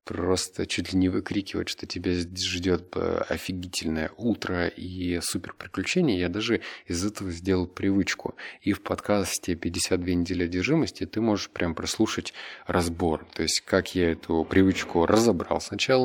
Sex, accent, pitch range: male, native, 85-105 Hz